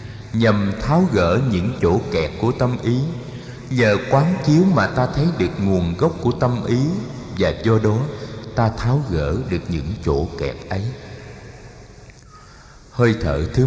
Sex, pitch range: male, 100-130 Hz